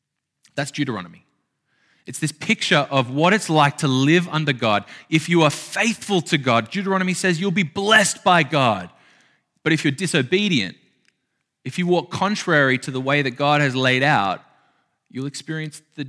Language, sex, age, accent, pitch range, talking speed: English, male, 20-39, Australian, 145-200 Hz, 170 wpm